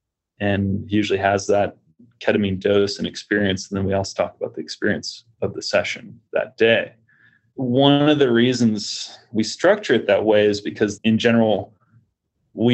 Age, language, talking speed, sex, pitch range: 30-49, English, 165 wpm, male, 105-125 Hz